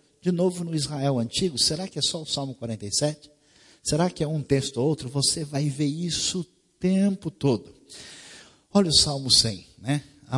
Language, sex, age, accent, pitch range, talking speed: Portuguese, male, 50-69, Brazilian, 120-155 Hz, 185 wpm